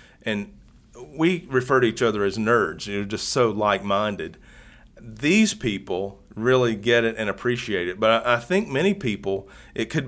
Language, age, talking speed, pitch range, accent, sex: English, 40-59, 175 wpm, 105-130 Hz, American, male